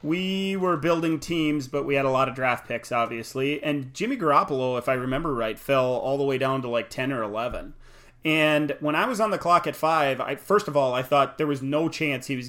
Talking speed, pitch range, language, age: 245 wpm, 130-160 Hz, English, 30-49